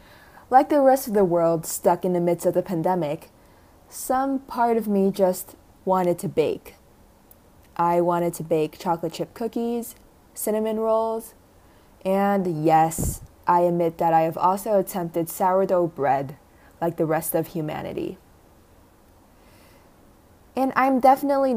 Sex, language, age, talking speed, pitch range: female, English, 20-39, 135 wpm, 165-220 Hz